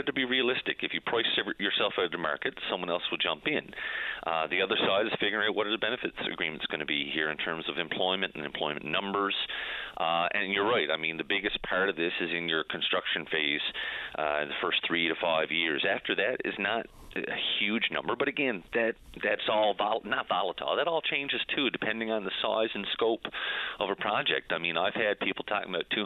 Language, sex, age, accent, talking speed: English, male, 40-59, American, 225 wpm